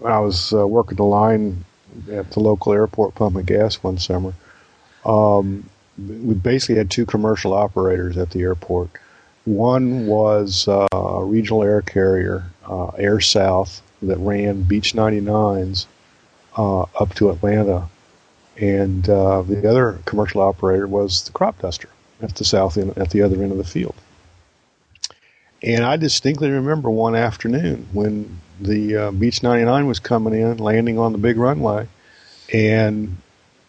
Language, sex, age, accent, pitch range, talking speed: English, male, 50-69, American, 100-130 Hz, 150 wpm